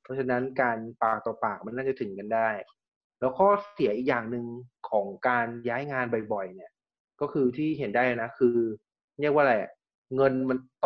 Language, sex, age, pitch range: Thai, male, 20-39, 120-140 Hz